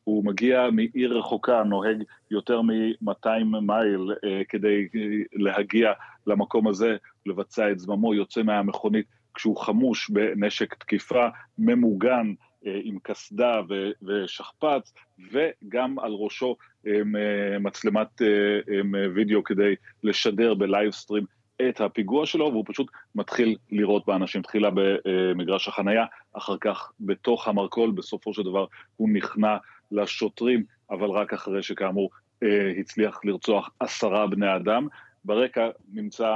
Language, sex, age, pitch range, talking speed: Hebrew, male, 40-59, 100-110 Hz, 120 wpm